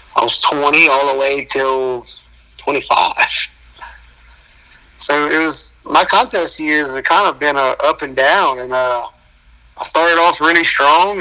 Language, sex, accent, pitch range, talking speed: English, male, American, 125-175 Hz, 150 wpm